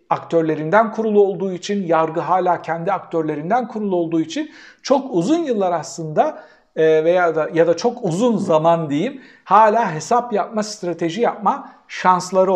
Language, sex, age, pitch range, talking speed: Turkish, male, 60-79, 160-220 Hz, 140 wpm